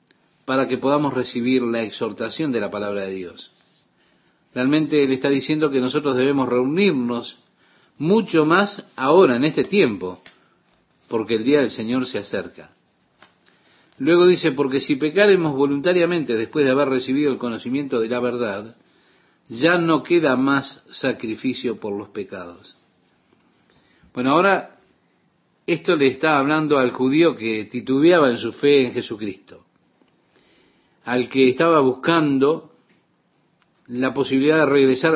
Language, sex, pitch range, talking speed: Spanish, male, 120-150 Hz, 135 wpm